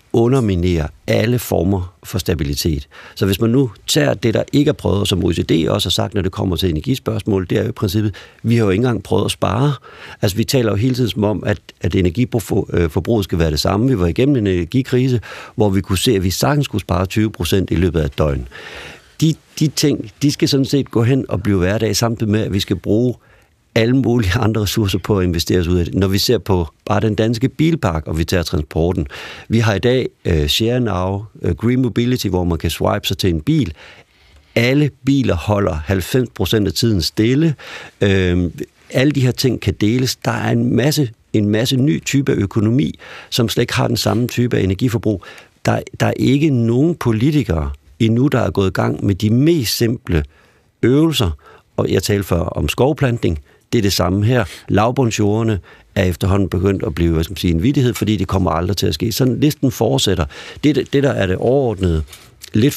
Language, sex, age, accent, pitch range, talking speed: Danish, male, 50-69, native, 95-125 Hz, 205 wpm